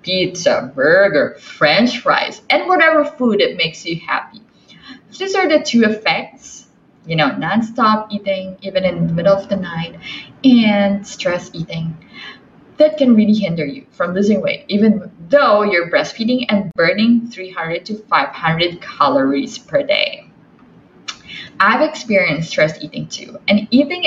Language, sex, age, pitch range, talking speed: English, female, 20-39, 185-250 Hz, 145 wpm